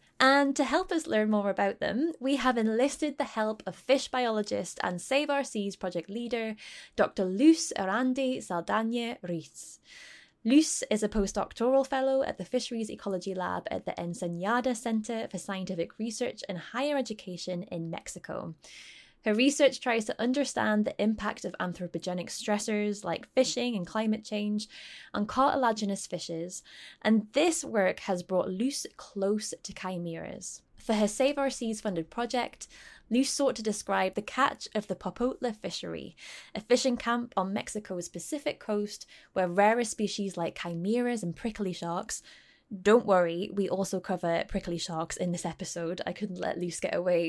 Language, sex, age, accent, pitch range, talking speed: English, female, 10-29, British, 180-245 Hz, 155 wpm